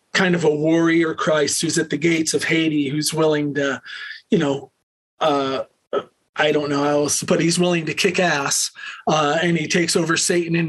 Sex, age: male, 40-59